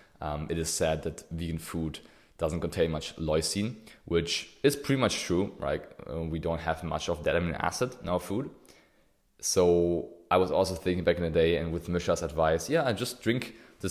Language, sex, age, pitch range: English, male, 20-39, 85-100 Hz